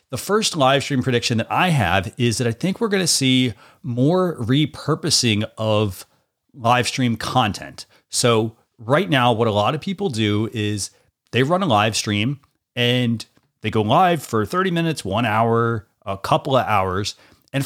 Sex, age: male, 40-59